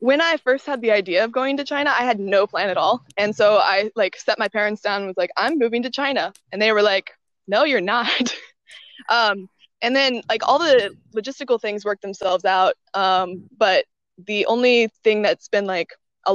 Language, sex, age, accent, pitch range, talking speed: English, female, 20-39, American, 195-240 Hz, 215 wpm